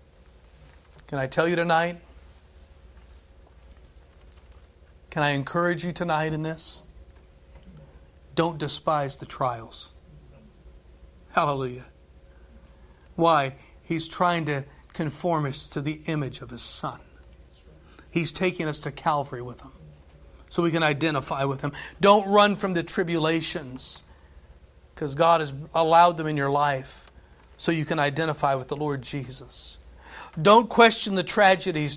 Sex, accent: male, American